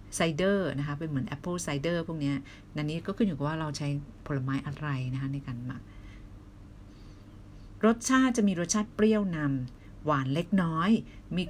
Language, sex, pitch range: Thai, female, 130-185 Hz